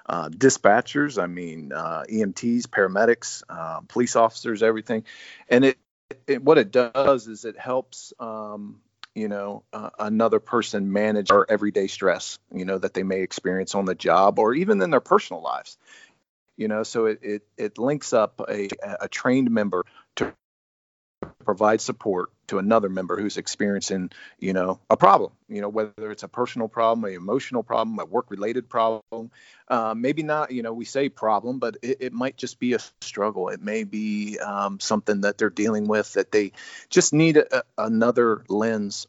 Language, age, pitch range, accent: English, 40-59, 105-120 Hz, American